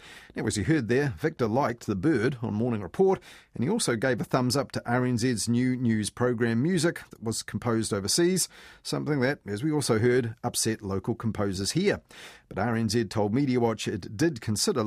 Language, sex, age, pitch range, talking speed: English, male, 40-59, 110-135 Hz, 185 wpm